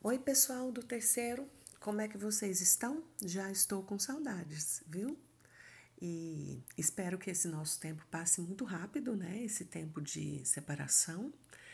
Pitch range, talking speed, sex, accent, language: 155-205 Hz, 145 wpm, female, Brazilian, English